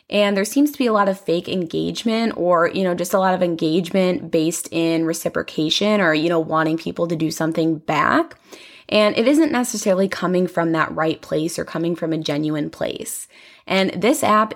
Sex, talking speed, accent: female, 200 wpm, American